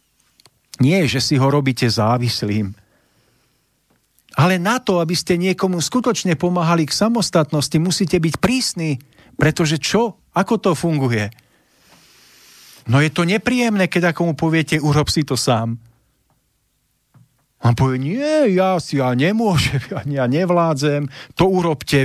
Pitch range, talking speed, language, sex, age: 135-180 Hz, 125 wpm, Slovak, male, 40-59